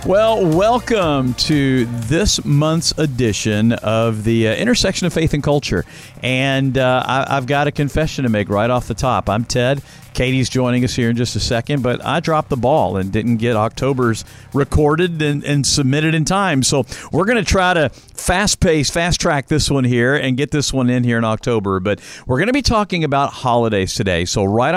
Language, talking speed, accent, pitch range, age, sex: English, 200 wpm, American, 110-150 Hz, 50-69, male